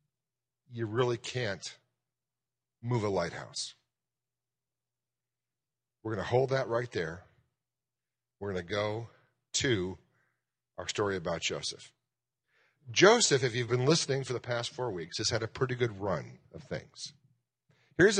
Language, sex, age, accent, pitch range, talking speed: English, male, 50-69, American, 115-145 Hz, 135 wpm